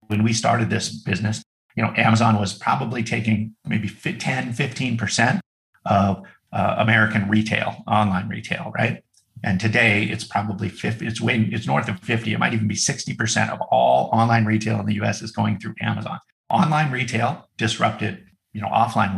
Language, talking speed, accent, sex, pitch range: English, 165 wpm, American, male, 105-115 Hz